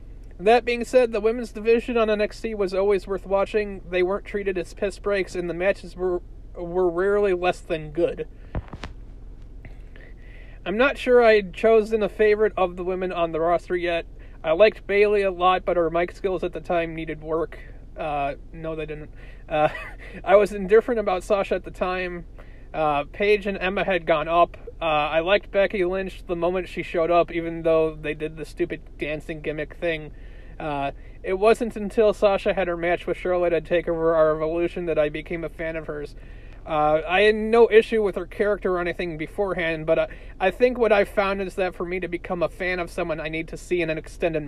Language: English